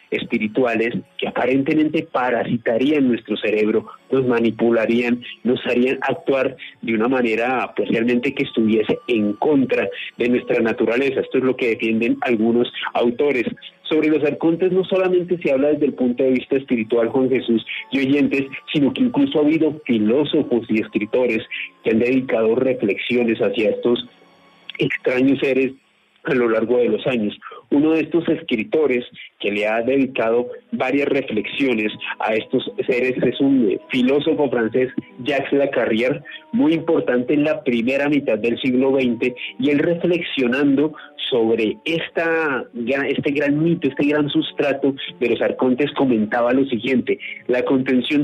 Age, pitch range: 40-59, 120-155 Hz